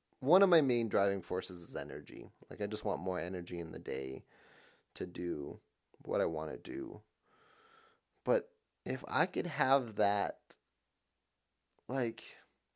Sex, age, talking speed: male, 30-49, 145 wpm